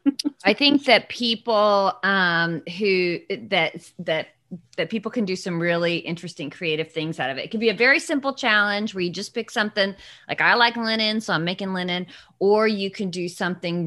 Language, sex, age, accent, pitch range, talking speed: English, female, 30-49, American, 180-235 Hz, 195 wpm